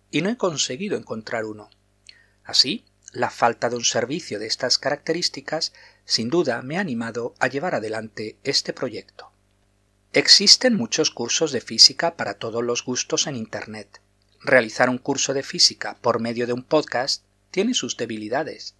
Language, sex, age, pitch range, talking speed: Spanish, male, 40-59, 105-140 Hz, 155 wpm